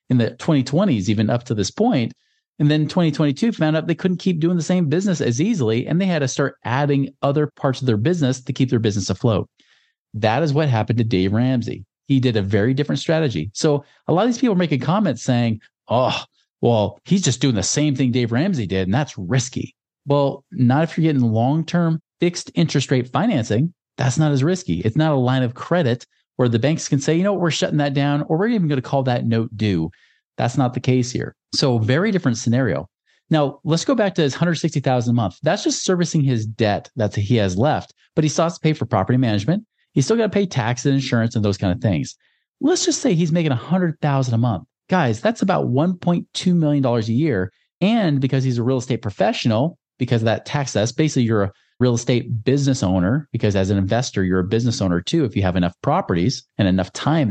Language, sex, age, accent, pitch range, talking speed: English, male, 40-59, American, 115-160 Hz, 225 wpm